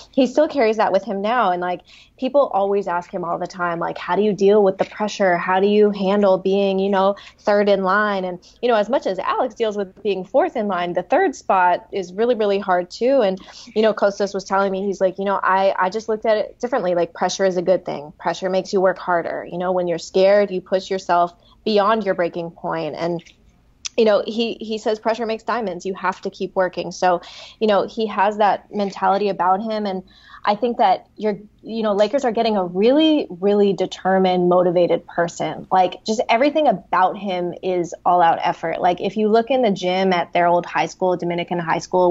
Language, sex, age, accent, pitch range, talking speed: English, female, 20-39, American, 180-210 Hz, 225 wpm